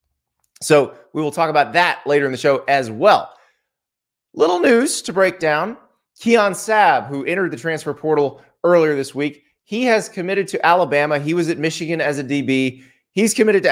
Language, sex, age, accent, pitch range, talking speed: English, male, 20-39, American, 140-190 Hz, 185 wpm